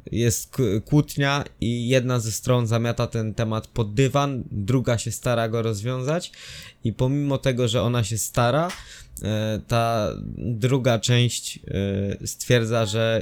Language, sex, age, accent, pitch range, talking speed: Polish, male, 20-39, native, 110-130 Hz, 125 wpm